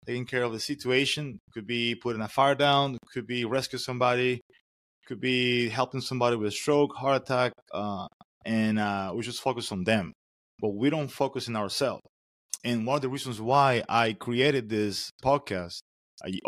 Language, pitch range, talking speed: English, 105-140 Hz, 180 wpm